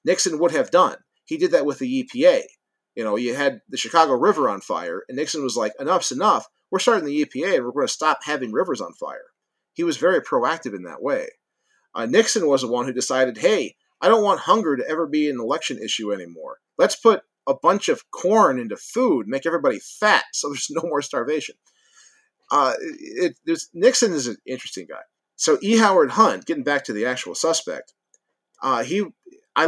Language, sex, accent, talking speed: English, male, American, 205 wpm